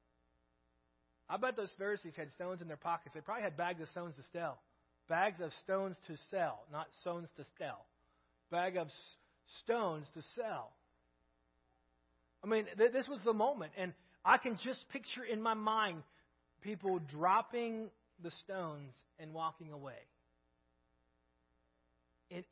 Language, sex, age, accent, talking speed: English, male, 30-49, American, 140 wpm